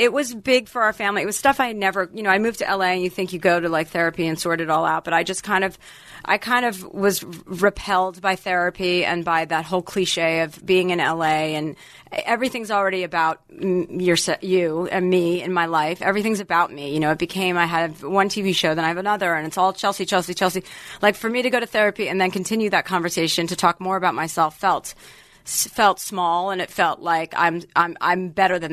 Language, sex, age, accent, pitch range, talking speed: English, female, 30-49, American, 170-200 Hz, 240 wpm